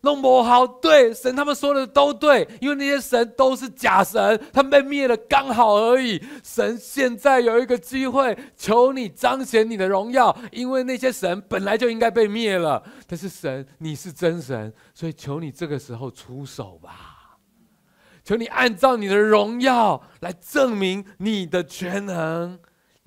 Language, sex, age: Chinese, male, 30-49